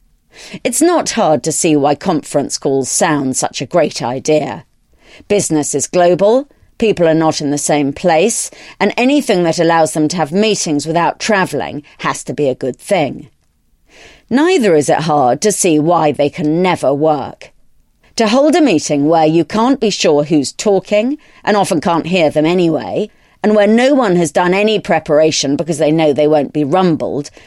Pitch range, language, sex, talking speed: 150-210 Hz, English, female, 180 wpm